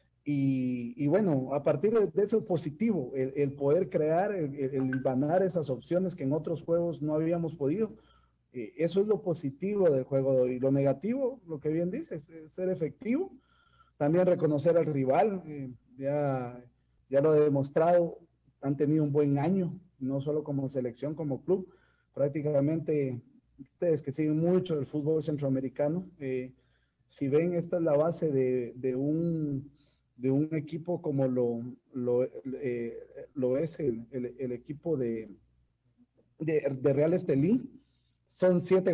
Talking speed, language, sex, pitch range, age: 155 wpm, Spanish, male, 135-180 Hz, 40-59